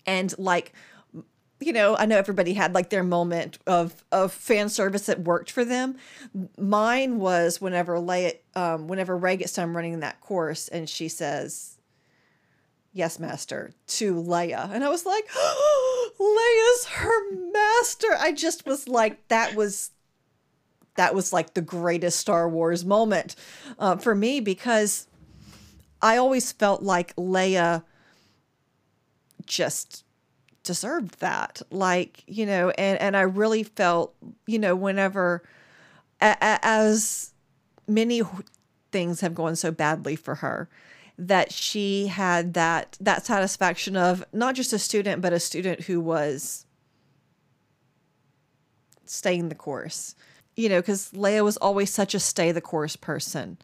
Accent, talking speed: American, 140 wpm